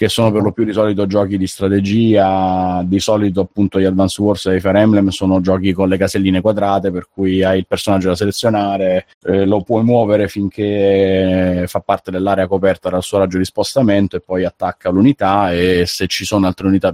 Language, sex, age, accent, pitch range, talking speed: Italian, male, 30-49, native, 95-100 Hz, 200 wpm